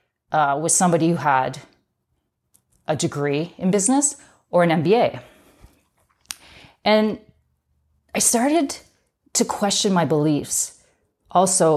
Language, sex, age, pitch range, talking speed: English, female, 30-49, 145-190 Hz, 100 wpm